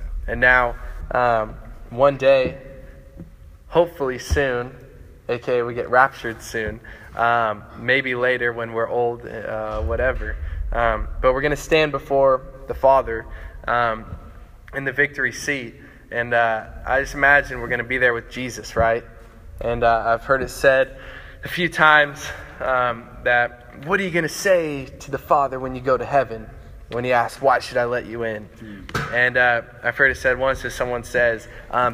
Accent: American